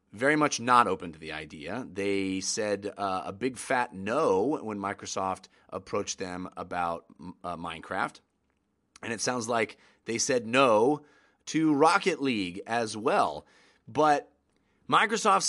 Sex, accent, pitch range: male, American, 105-155 Hz